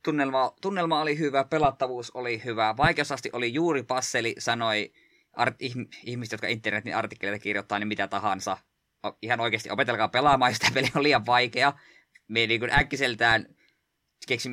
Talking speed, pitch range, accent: 155 wpm, 105-130 Hz, native